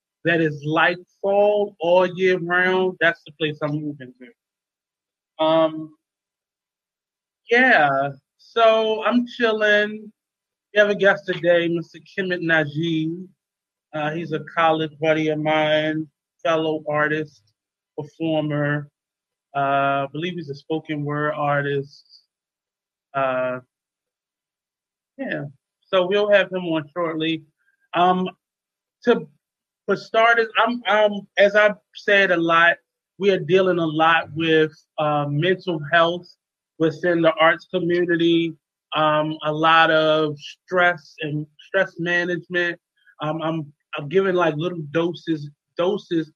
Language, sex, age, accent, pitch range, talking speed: English, male, 20-39, American, 145-175 Hz, 120 wpm